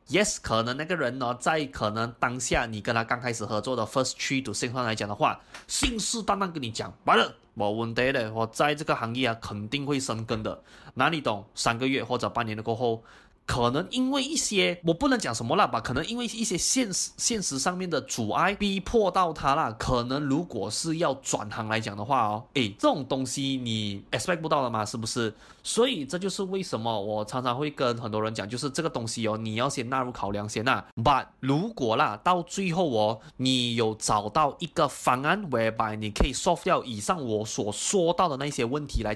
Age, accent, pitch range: 20-39, native, 115-170 Hz